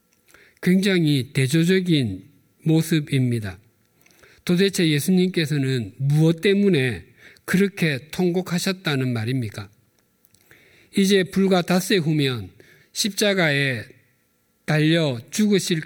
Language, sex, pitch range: Korean, male, 120-160 Hz